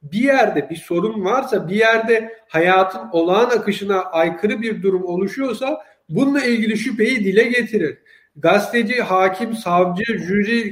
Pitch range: 190-235 Hz